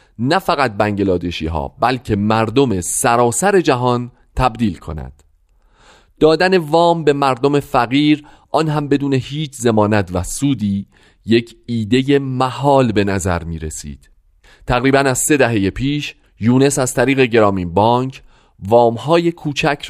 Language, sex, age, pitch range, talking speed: Persian, male, 40-59, 95-135 Hz, 125 wpm